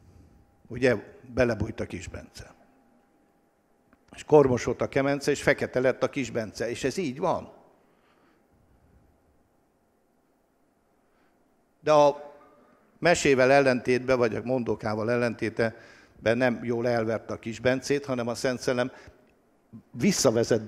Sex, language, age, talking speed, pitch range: male, English, 60-79, 100 wpm, 115-145 Hz